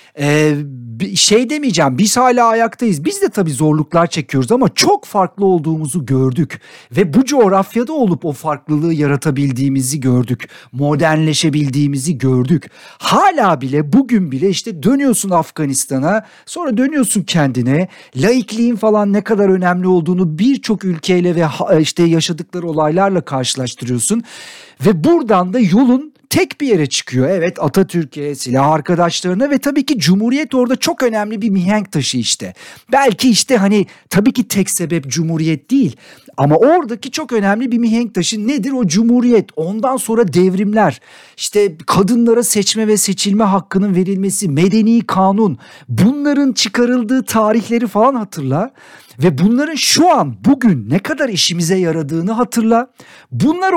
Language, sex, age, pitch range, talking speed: Turkish, male, 50-69, 160-240 Hz, 135 wpm